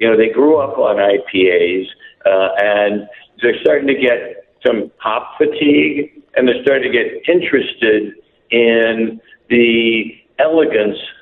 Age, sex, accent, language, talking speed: 60-79, male, American, English, 135 wpm